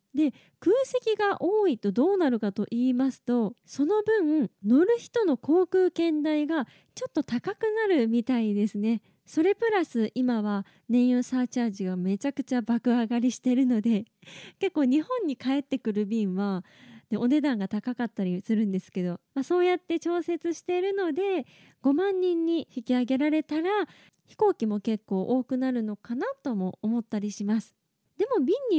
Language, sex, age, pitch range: Japanese, female, 20-39, 220-315 Hz